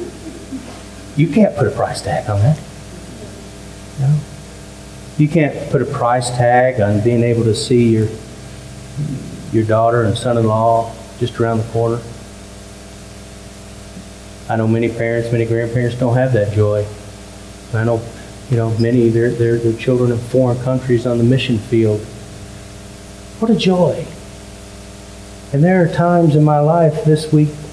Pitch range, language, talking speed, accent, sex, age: 105-170 Hz, English, 150 wpm, American, male, 40-59